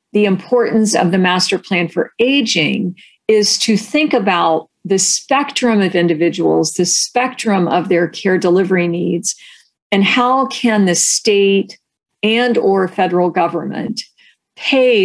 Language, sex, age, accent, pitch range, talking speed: English, female, 50-69, American, 170-215 Hz, 130 wpm